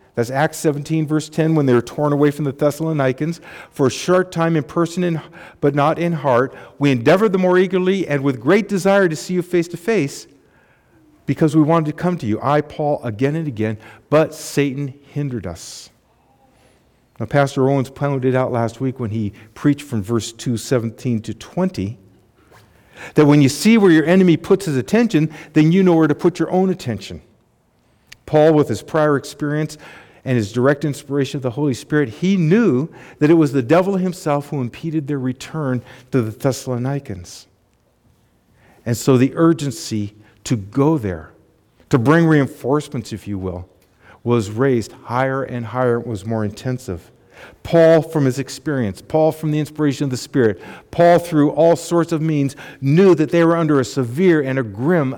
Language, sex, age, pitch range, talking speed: English, male, 50-69, 125-160 Hz, 180 wpm